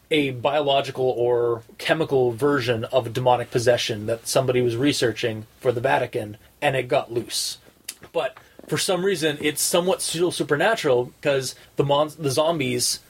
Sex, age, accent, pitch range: male, 30-49, American, 120-150 Hz